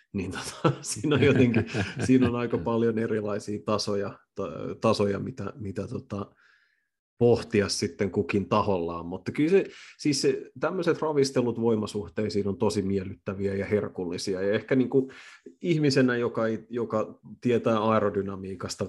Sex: male